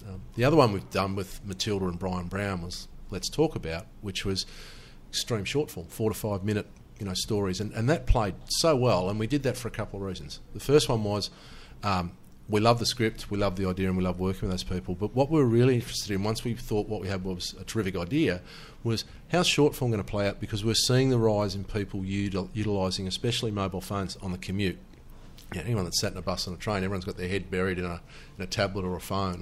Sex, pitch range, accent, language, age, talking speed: male, 95-110 Hz, Australian, English, 40-59, 250 wpm